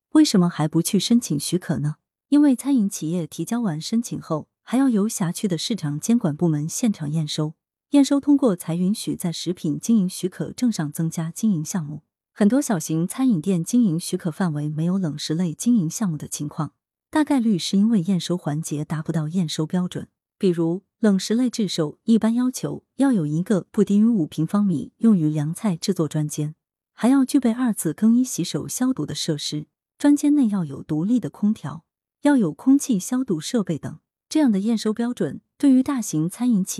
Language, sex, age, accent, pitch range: Chinese, female, 20-39, native, 155-230 Hz